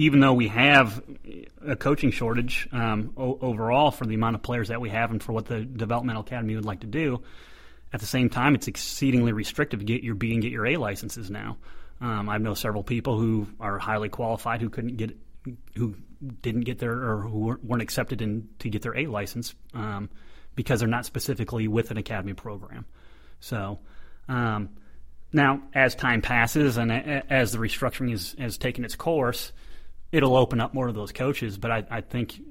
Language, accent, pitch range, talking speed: English, American, 110-125 Hz, 195 wpm